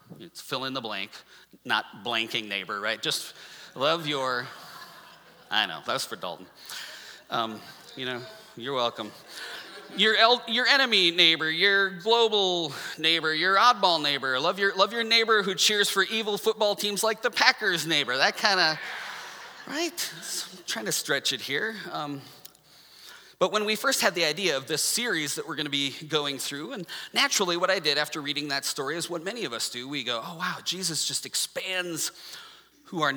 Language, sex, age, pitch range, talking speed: English, male, 30-49, 140-195 Hz, 175 wpm